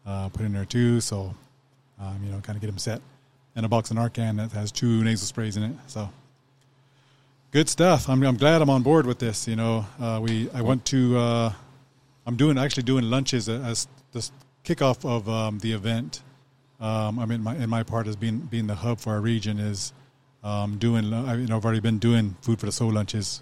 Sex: male